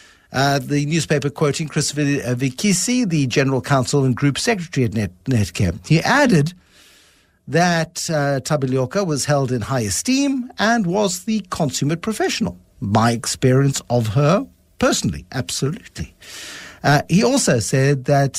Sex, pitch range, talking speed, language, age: male, 130-190 Hz, 135 wpm, English, 60-79